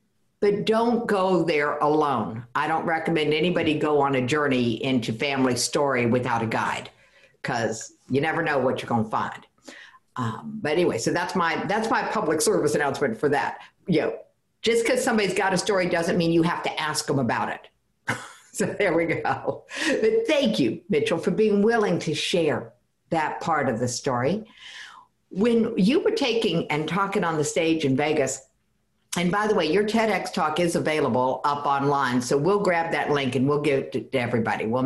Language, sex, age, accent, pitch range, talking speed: English, female, 50-69, American, 130-195 Hz, 190 wpm